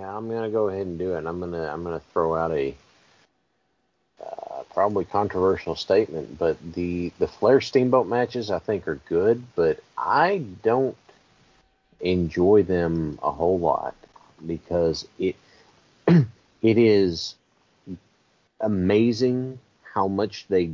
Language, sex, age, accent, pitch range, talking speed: English, male, 50-69, American, 85-110 Hz, 135 wpm